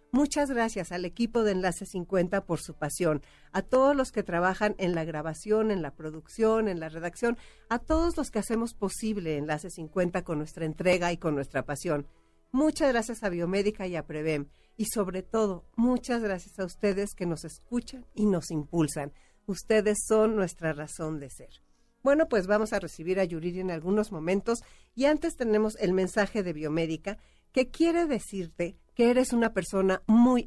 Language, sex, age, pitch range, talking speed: Spanish, female, 50-69, 165-225 Hz, 175 wpm